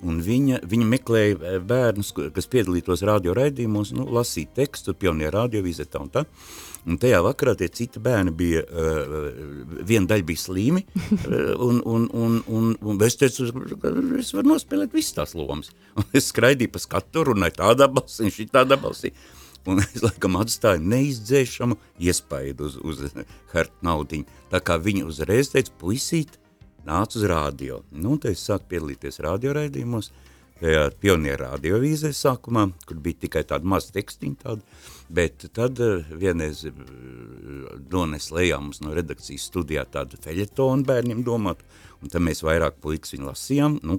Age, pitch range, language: 60-79, 80-115 Hz, English